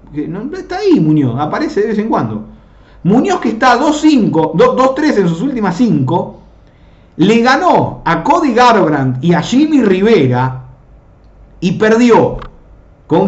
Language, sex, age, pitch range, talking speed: Spanish, male, 50-69, 160-255 Hz, 130 wpm